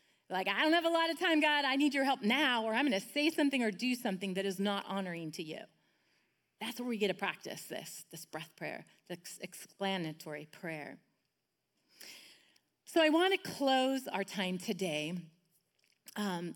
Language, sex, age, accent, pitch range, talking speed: English, female, 30-49, American, 180-245 Hz, 180 wpm